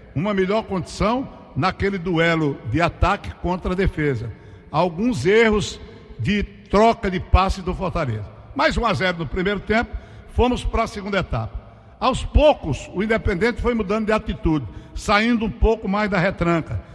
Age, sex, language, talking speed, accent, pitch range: 60-79, male, Portuguese, 155 wpm, Brazilian, 150-220 Hz